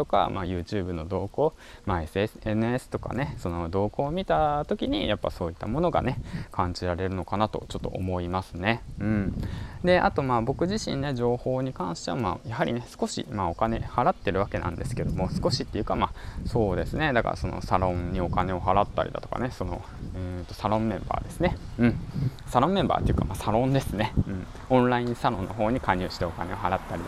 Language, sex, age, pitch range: Japanese, male, 20-39, 95-130 Hz